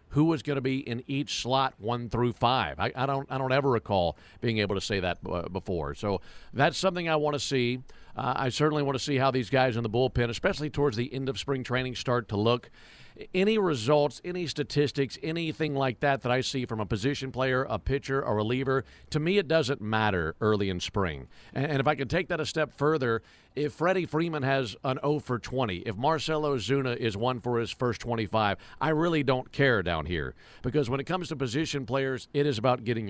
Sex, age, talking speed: male, 50-69, 220 wpm